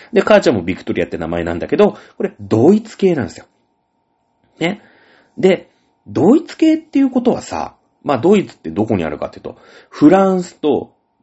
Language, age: Japanese, 30-49